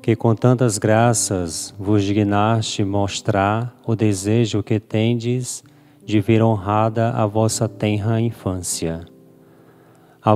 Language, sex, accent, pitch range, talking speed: Portuguese, male, Brazilian, 95-115 Hz, 110 wpm